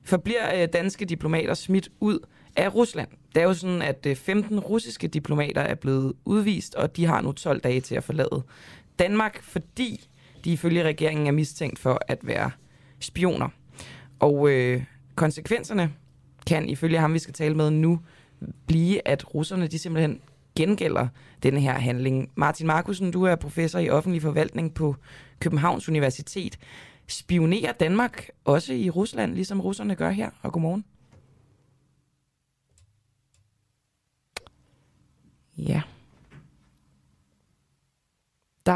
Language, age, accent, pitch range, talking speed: Danish, 20-39, native, 135-175 Hz, 125 wpm